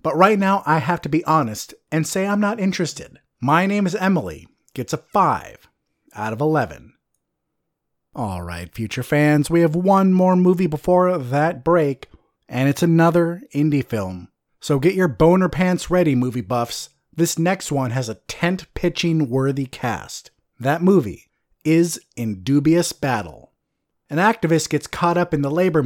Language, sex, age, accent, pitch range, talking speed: English, male, 30-49, American, 135-175 Hz, 160 wpm